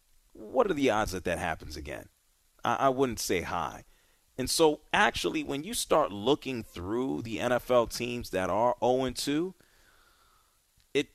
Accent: American